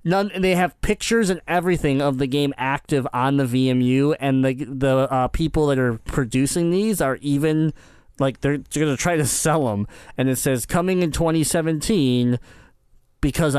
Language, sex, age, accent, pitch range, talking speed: English, male, 20-39, American, 125-170 Hz, 180 wpm